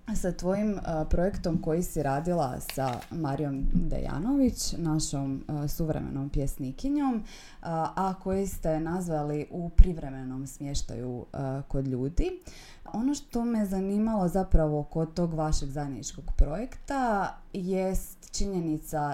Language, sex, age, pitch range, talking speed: Croatian, female, 20-39, 150-200 Hz, 105 wpm